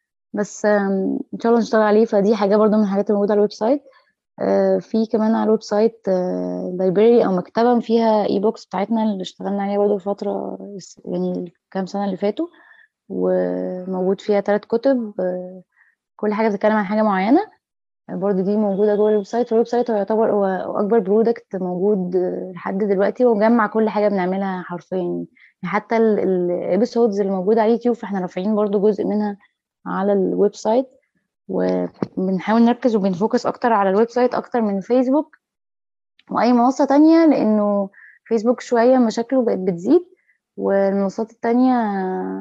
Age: 20-39